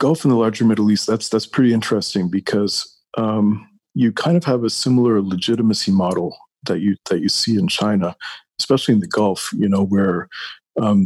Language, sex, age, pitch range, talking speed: English, male, 40-59, 100-120 Hz, 185 wpm